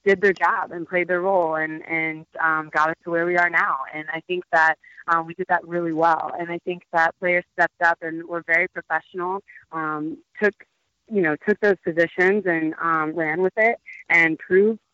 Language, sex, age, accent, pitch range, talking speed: English, female, 20-39, American, 160-185 Hz, 210 wpm